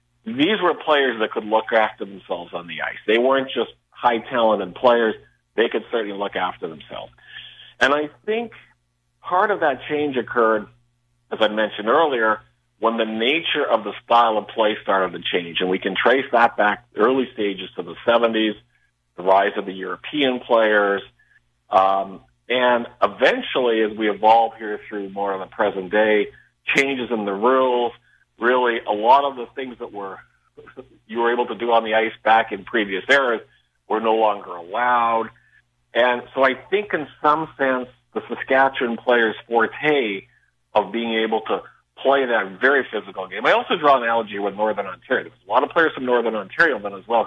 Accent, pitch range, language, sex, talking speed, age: American, 105-130 Hz, English, male, 185 wpm, 50-69